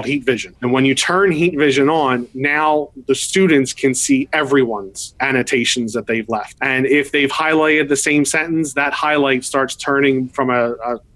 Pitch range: 130-145 Hz